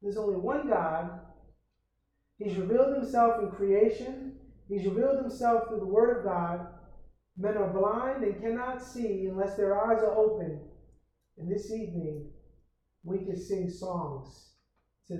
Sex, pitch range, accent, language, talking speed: male, 170-210 Hz, American, English, 140 wpm